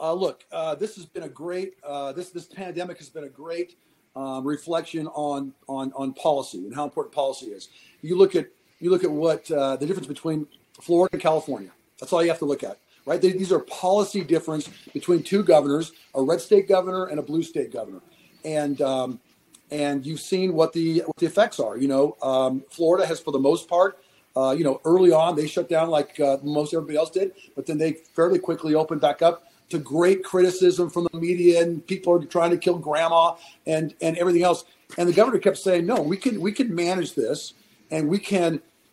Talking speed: 215 wpm